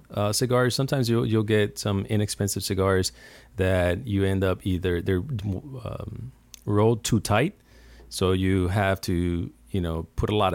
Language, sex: English, male